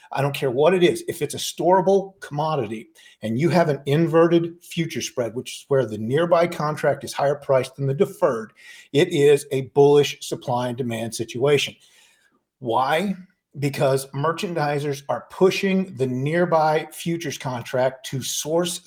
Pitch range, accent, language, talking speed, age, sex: 135-180 Hz, American, English, 155 wpm, 50-69, male